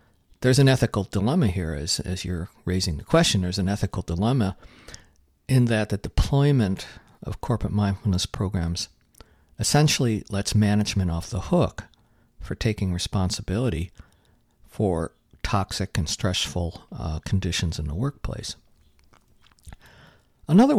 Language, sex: English, male